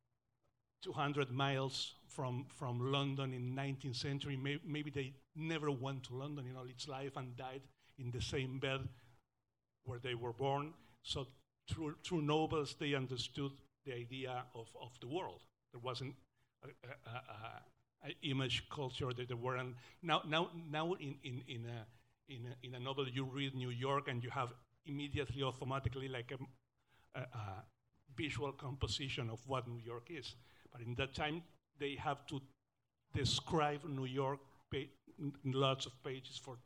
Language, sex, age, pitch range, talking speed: English, male, 60-79, 120-140 Hz, 160 wpm